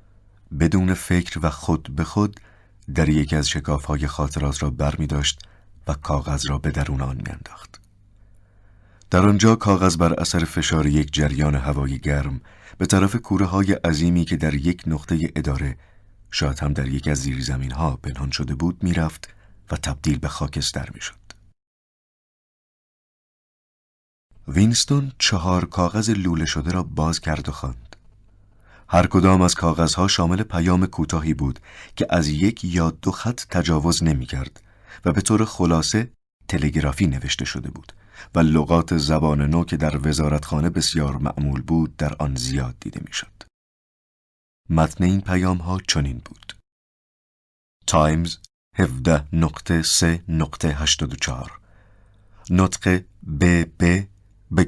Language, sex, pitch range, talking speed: English, male, 75-95 Hz, 135 wpm